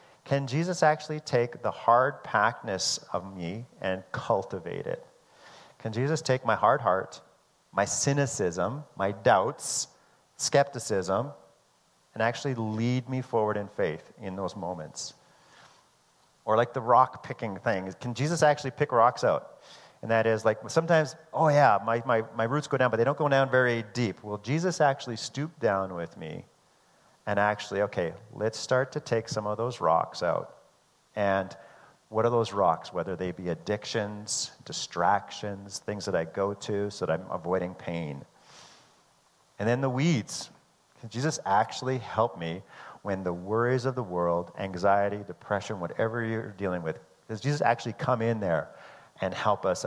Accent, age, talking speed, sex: American, 40-59, 160 wpm, male